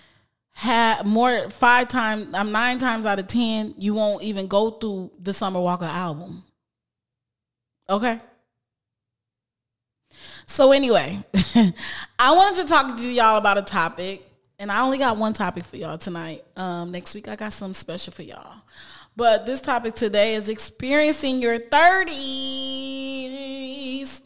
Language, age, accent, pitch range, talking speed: English, 20-39, American, 180-245 Hz, 140 wpm